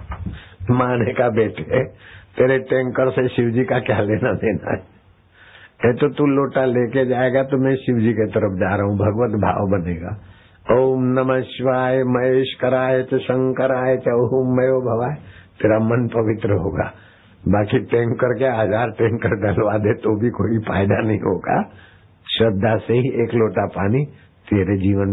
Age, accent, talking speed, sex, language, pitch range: 60-79, native, 130 wpm, male, Hindi, 100-125 Hz